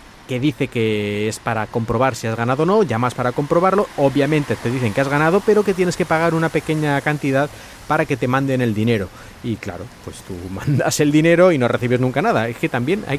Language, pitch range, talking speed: Spanish, 115-160 Hz, 225 wpm